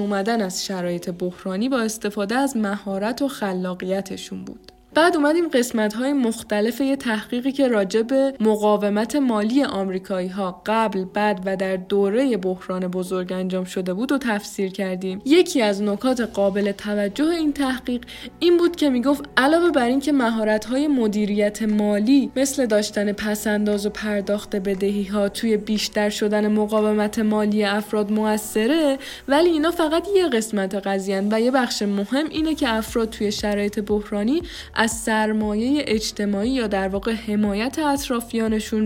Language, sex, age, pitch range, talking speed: Persian, female, 10-29, 200-255 Hz, 140 wpm